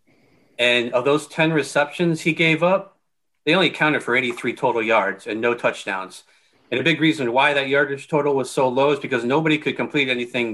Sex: male